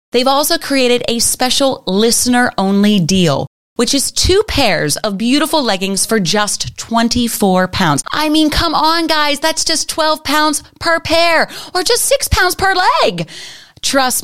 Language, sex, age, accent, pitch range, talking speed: English, female, 30-49, American, 165-250 Hz, 150 wpm